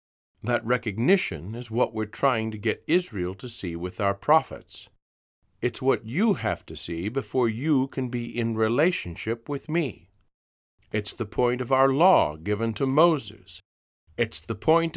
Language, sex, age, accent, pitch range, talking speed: English, male, 50-69, American, 95-135 Hz, 160 wpm